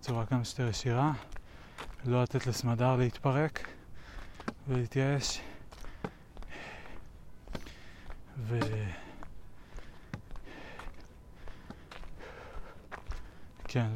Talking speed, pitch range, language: 45 wpm, 100-130 Hz, Hebrew